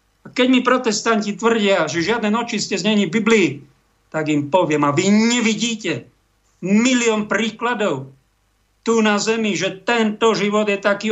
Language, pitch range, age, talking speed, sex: Slovak, 165-230 Hz, 50-69, 140 wpm, male